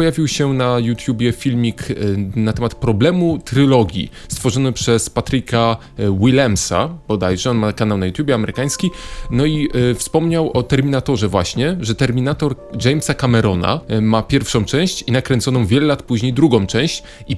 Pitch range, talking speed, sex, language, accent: 110-140 Hz, 140 wpm, male, Polish, native